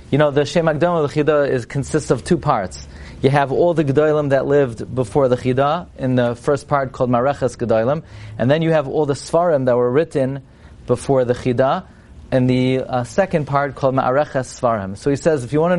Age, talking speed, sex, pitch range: 40-59, 220 wpm, male, 125-155 Hz